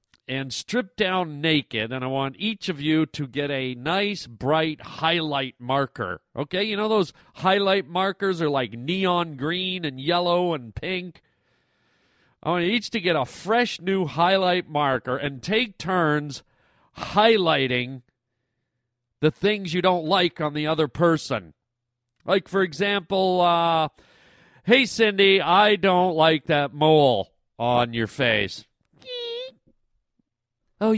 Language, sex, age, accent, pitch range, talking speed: English, male, 40-59, American, 155-230 Hz, 135 wpm